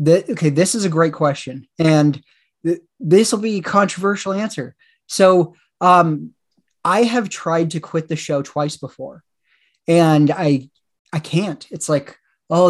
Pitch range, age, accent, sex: 145-180 Hz, 30-49, American, male